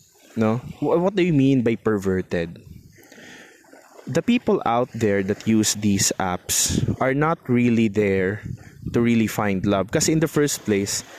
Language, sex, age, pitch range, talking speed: Filipino, male, 20-39, 105-130 Hz, 150 wpm